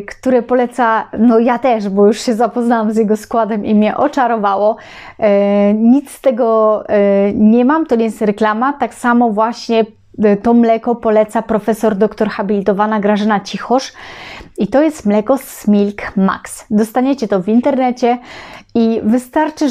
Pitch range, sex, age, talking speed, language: 210-245 Hz, female, 30-49, 150 wpm, Polish